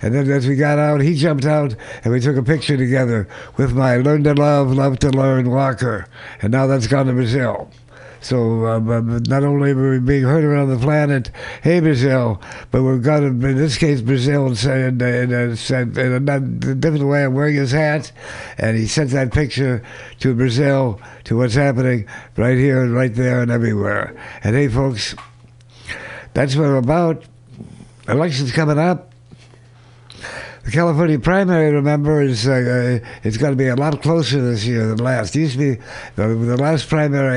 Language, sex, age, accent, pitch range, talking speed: English, male, 60-79, American, 120-145 Hz, 180 wpm